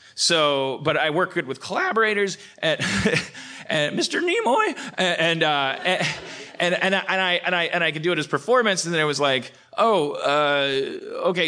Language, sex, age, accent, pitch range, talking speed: English, male, 30-49, American, 130-180 Hz, 195 wpm